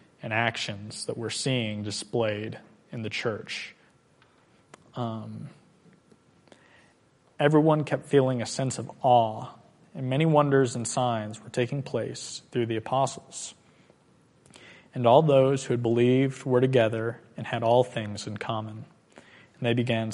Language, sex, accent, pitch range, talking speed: English, male, American, 110-130 Hz, 135 wpm